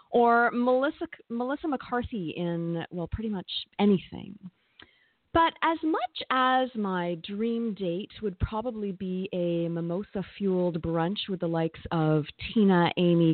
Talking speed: 125 wpm